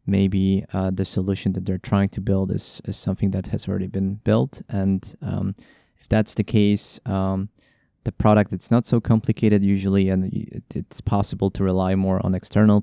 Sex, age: male, 20-39